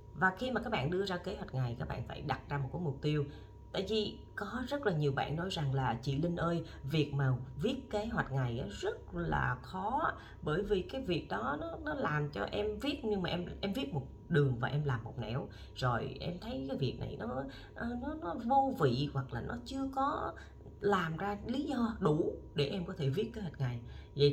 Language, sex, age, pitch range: Vietnamese, female, 20-39, 130-180 Hz